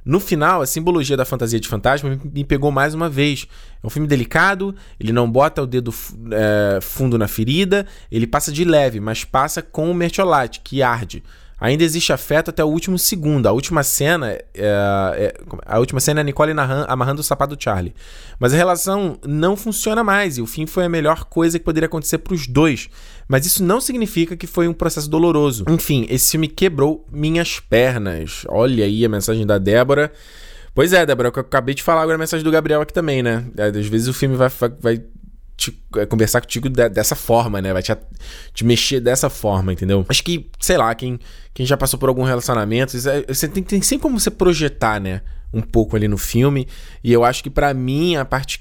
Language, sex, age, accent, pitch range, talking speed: Portuguese, male, 20-39, Brazilian, 115-160 Hz, 210 wpm